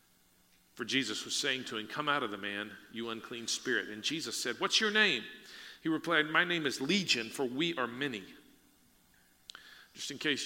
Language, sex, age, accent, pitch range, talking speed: English, male, 40-59, American, 125-155 Hz, 190 wpm